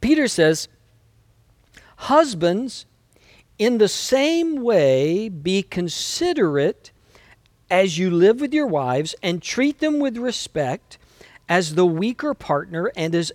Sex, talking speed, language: male, 115 wpm, English